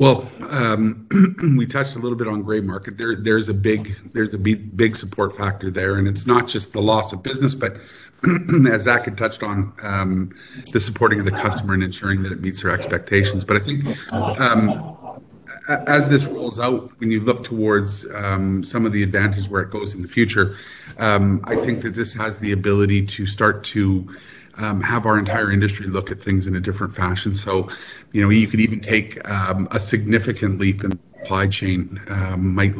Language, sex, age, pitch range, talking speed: English, male, 40-59, 95-110 Hz, 205 wpm